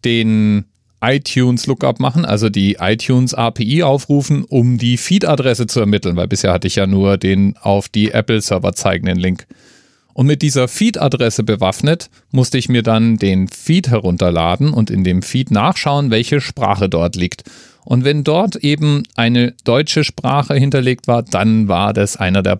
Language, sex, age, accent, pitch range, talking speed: German, male, 40-59, German, 95-130 Hz, 160 wpm